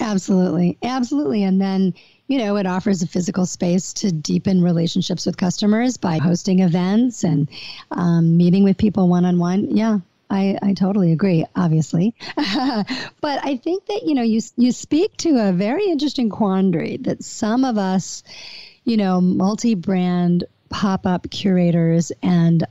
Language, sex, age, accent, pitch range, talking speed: English, female, 50-69, American, 170-210 Hz, 145 wpm